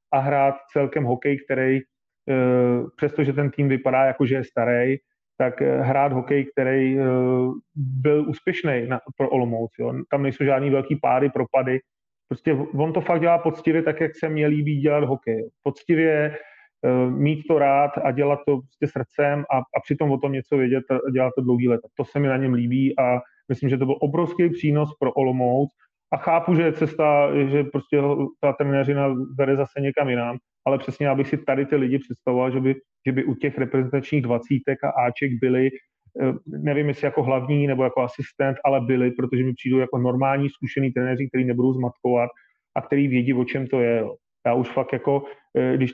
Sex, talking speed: male, 180 wpm